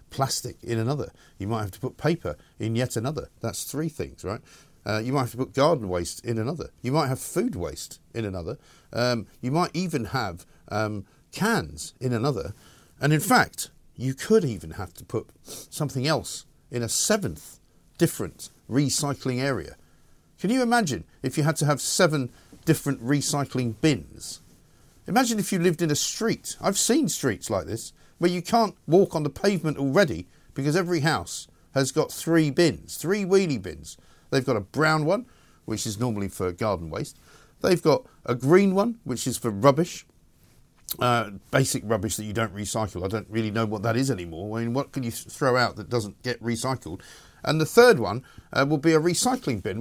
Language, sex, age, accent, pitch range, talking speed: English, male, 50-69, British, 110-155 Hz, 190 wpm